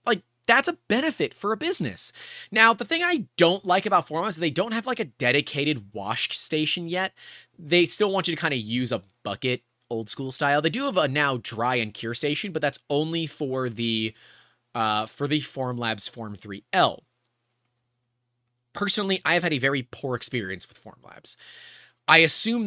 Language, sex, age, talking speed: English, male, 30-49, 185 wpm